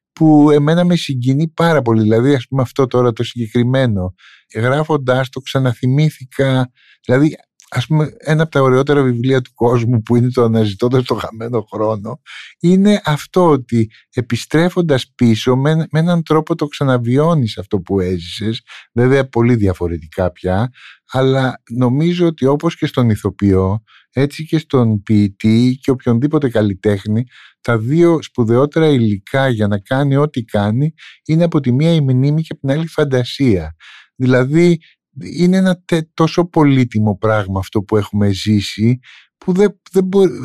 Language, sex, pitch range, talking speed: Greek, male, 110-155 Hz, 150 wpm